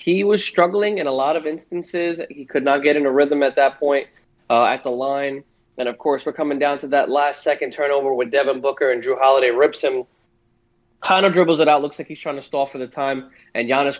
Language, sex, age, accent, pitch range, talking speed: English, male, 20-39, American, 130-155 Hz, 240 wpm